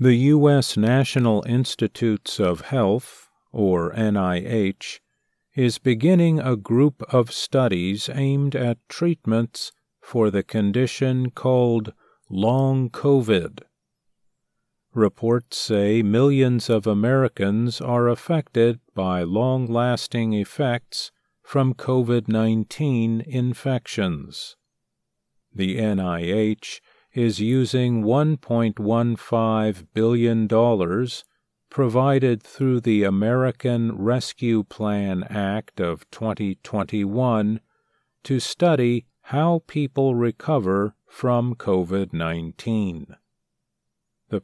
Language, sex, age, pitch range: English, male, 50-69, 110-130 Hz